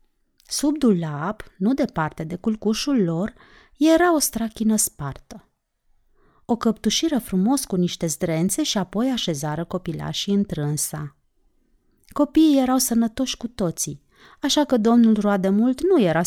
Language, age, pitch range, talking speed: Romanian, 30-49, 175-260 Hz, 120 wpm